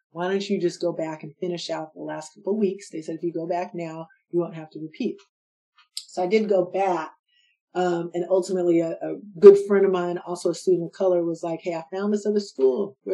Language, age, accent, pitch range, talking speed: English, 40-59, American, 170-210 Hz, 245 wpm